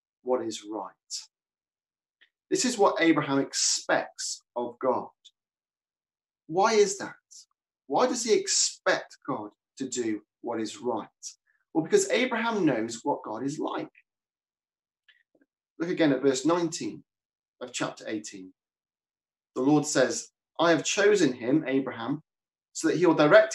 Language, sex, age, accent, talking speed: English, male, 30-49, British, 135 wpm